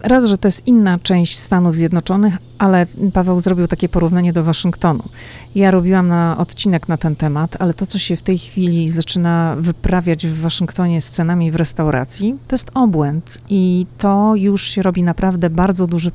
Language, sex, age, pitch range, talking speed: Polish, female, 40-59, 165-200 Hz, 180 wpm